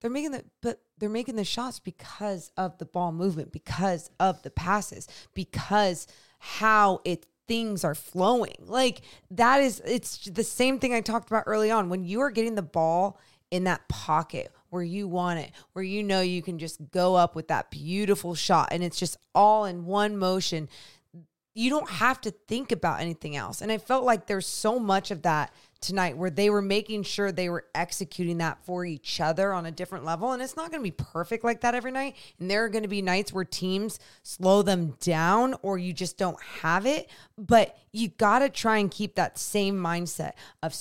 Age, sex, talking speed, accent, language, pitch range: 20-39, female, 205 wpm, American, English, 175-215 Hz